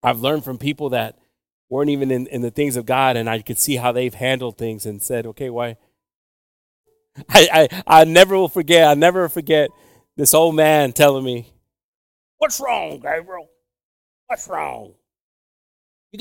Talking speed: 165 wpm